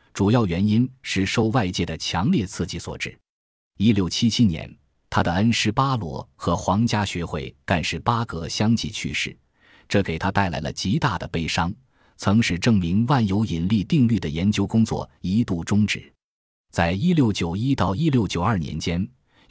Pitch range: 85-110 Hz